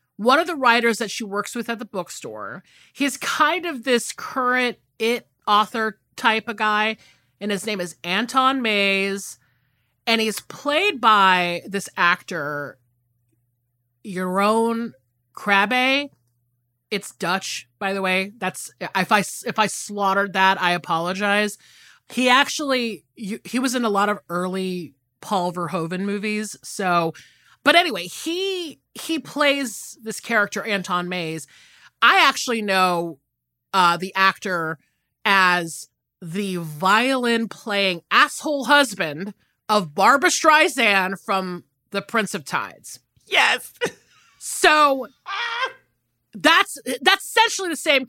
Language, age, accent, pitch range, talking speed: English, 30-49, American, 180-250 Hz, 125 wpm